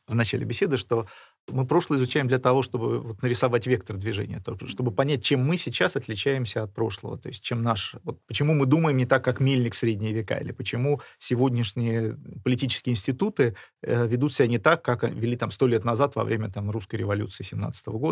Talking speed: 185 wpm